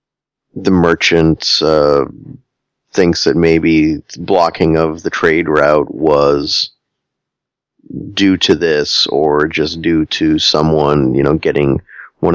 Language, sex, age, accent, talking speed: English, male, 30-49, American, 115 wpm